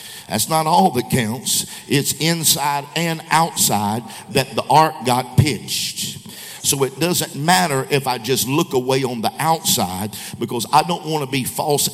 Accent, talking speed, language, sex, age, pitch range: American, 165 wpm, English, male, 50-69, 125-155 Hz